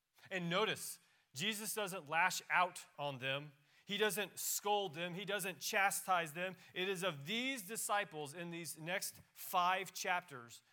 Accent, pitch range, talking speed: American, 125-180 Hz, 145 wpm